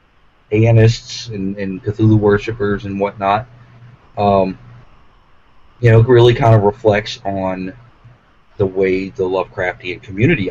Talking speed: 115 wpm